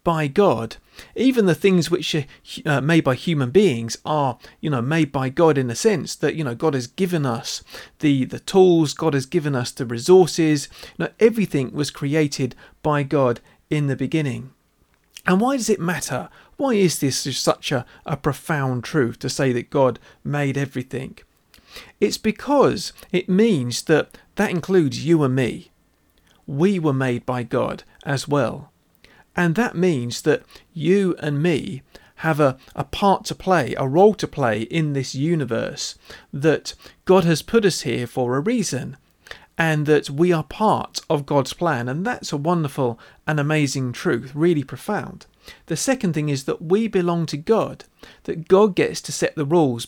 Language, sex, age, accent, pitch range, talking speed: English, male, 40-59, British, 135-180 Hz, 175 wpm